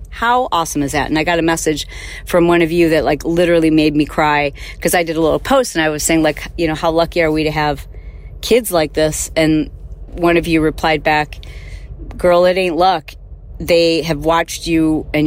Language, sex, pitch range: English, female, 115-180 Hz